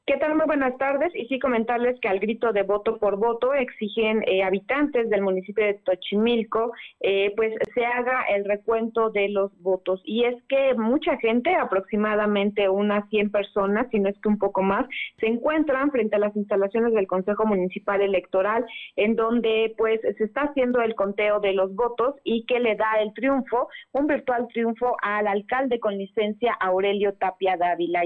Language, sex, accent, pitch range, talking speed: Spanish, female, Mexican, 195-235 Hz, 180 wpm